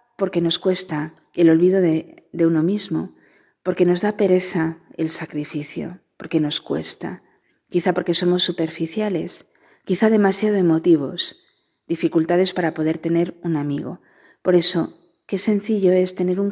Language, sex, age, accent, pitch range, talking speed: Spanish, female, 40-59, Spanish, 160-195 Hz, 140 wpm